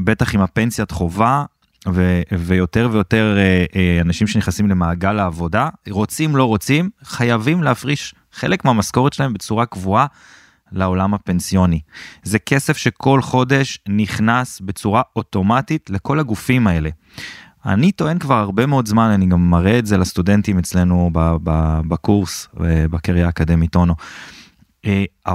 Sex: male